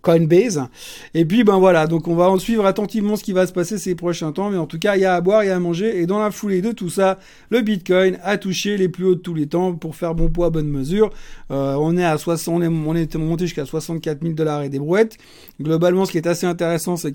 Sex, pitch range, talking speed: male, 160-195 Hz, 285 wpm